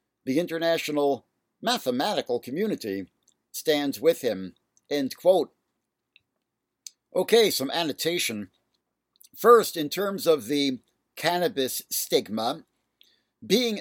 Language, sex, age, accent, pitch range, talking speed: English, male, 60-79, American, 140-180 Hz, 85 wpm